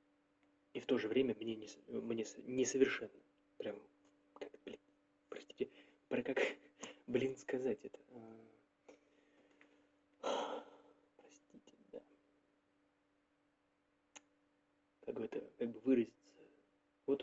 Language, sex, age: Russian, male, 20-39